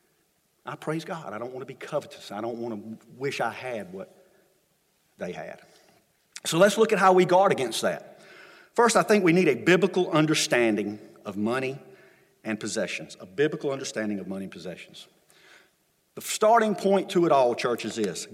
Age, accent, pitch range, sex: 50-69, American, 155-205 Hz, male